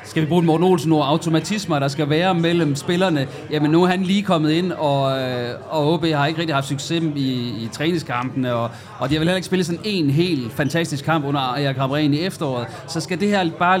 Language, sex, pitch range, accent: Danish, male, 135-165 Hz, native